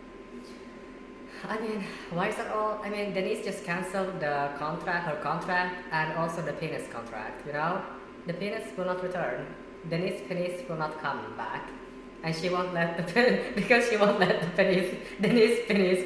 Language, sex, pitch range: English, female, 145-190 Hz